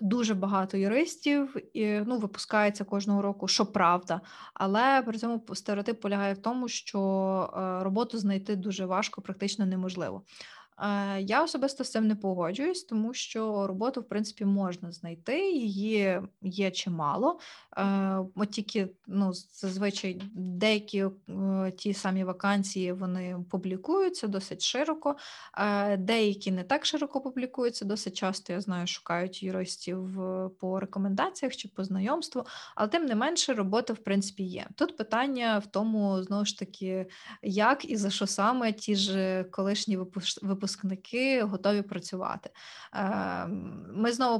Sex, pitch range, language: female, 195-225 Hz, Ukrainian